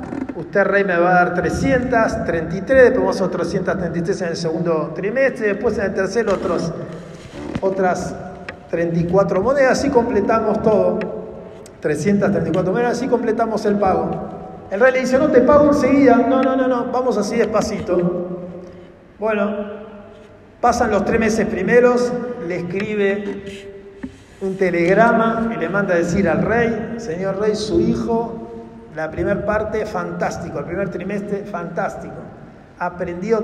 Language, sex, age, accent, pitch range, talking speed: Spanish, male, 50-69, Argentinian, 185-230 Hz, 140 wpm